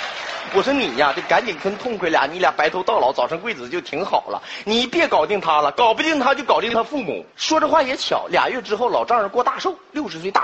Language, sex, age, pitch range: Chinese, male, 30-49, 180-275 Hz